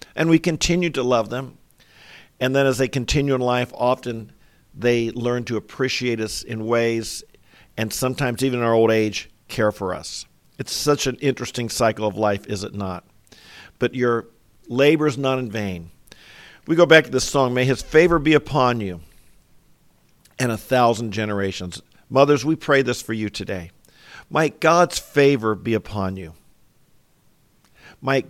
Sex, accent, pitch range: male, American, 110-140 Hz